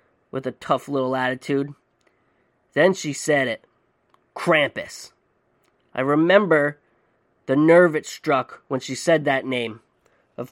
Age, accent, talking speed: 10-29, American, 125 wpm